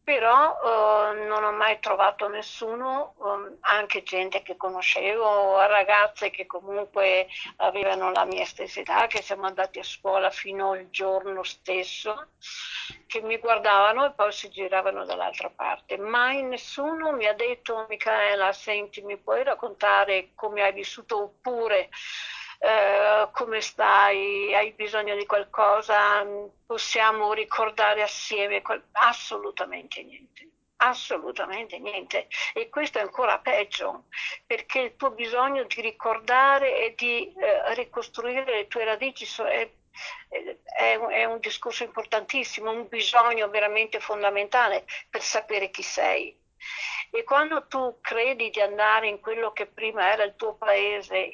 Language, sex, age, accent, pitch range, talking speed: Italian, female, 50-69, native, 205-240 Hz, 125 wpm